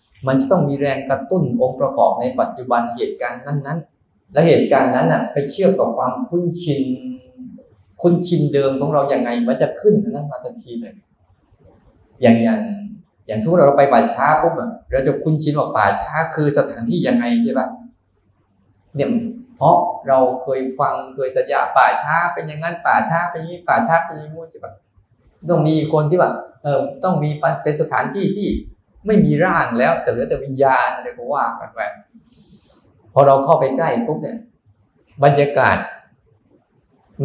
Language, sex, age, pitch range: Thai, male, 20-39, 130-210 Hz